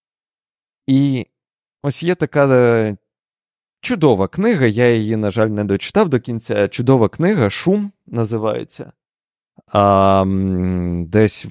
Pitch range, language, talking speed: 100-140 Hz, Ukrainian, 105 wpm